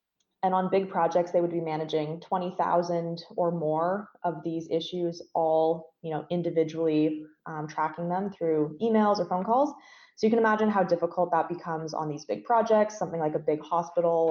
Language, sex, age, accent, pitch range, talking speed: English, female, 20-39, American, 160-190 Hz, 180 wpm